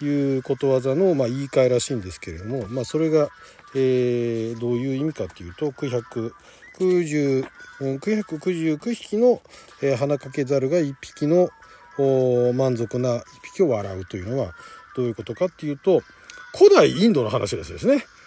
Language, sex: Japanese, male